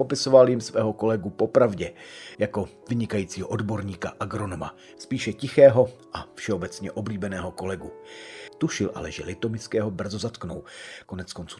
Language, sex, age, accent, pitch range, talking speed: Czech, male, 40-59, native, 100-130 Hz, 115 wpm